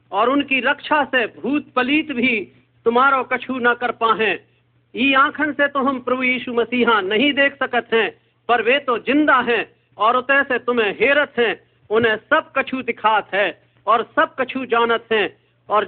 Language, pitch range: Hindi, 230-280 Hz